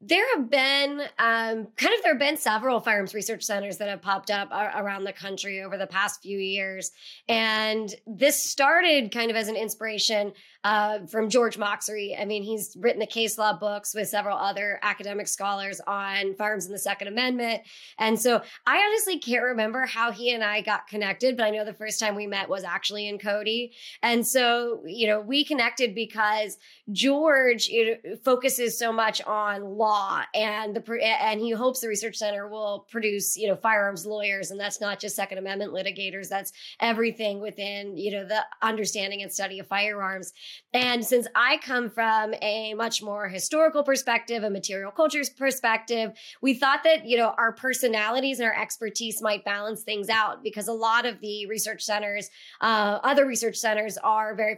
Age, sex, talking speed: 30-49, male, 185 wpm